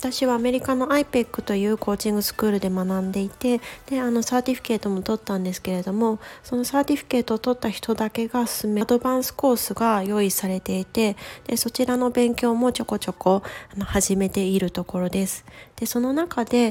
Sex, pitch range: female, 190-245 Hz